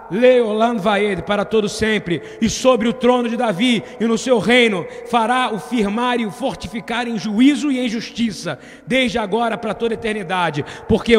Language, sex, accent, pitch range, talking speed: Portuguese, male, Brazilian, 175-225 Hz, 180 wpm